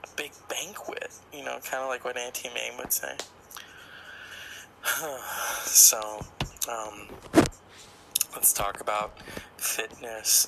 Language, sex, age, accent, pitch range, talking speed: English, male, 20-39, American, 110-130 Hz, 105 wpm